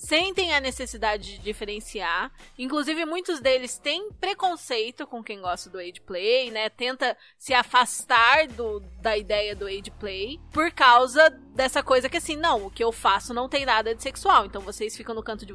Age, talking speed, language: 20-39, 185 wpm, Portuguese